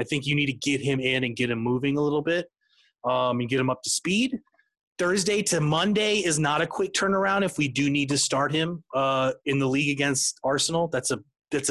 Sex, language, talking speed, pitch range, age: male, English, 235 wpm, 140-180 Hz, 30-49